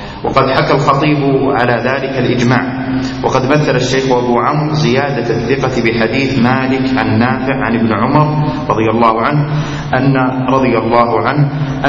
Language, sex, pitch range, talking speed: Arabic, male, 120-135 Hz, 130 wpm